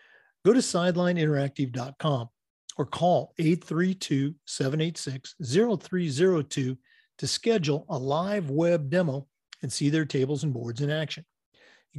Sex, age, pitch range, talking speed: male, 50-69, 135-175 Hz, 105 wpm